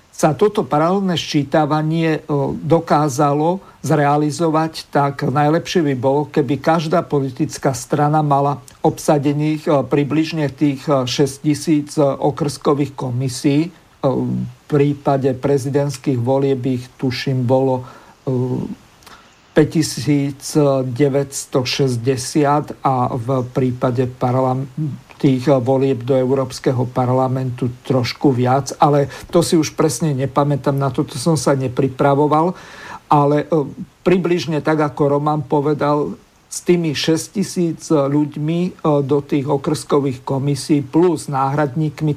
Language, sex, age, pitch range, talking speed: Slovak, male, 50-69, 135-155 Hz, 100 wpm